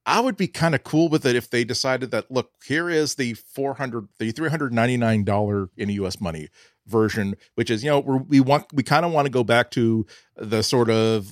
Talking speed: 245 wpm